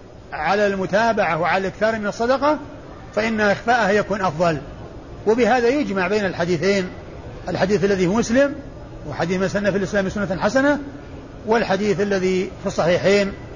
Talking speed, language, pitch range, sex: 125 wpm, Arabic, 185-225 Hz, male